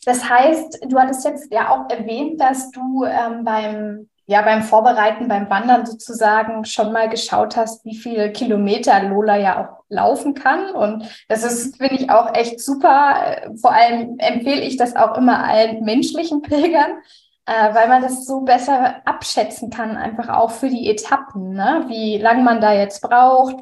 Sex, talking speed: female, 175 wpm